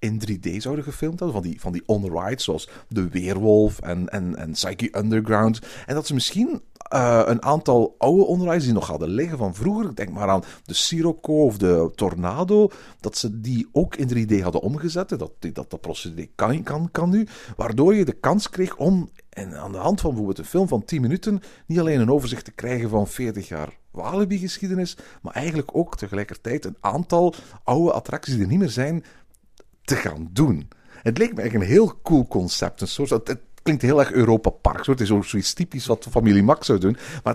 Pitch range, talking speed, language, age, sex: 100-150 Hz, 205 wpm, Dutch, 50-69, male